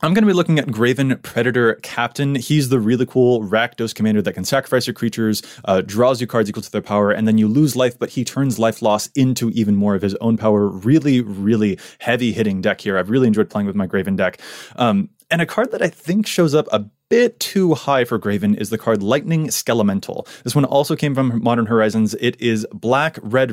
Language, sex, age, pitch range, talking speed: English, male, 20-39, 110-145 Hz, 230 wpm